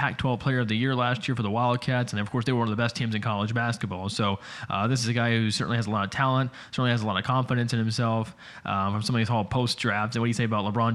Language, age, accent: English, 20-39, American